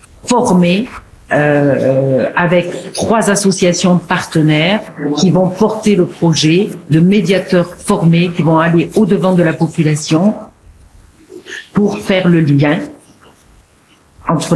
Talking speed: 110 wpm